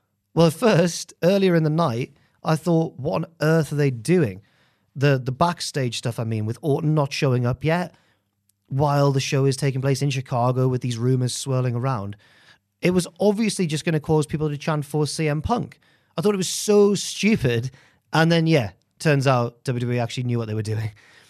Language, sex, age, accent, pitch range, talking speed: English, male, 30-49, British, 120-165 Hz, 200 wpm